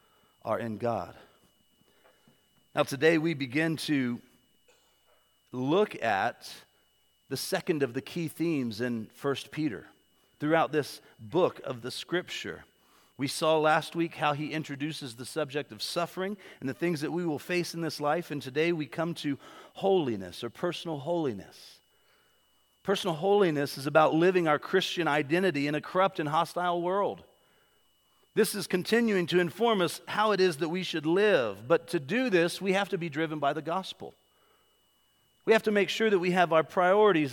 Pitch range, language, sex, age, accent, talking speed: 145-180 Hz, English, male, 40-59, American, 165 wpm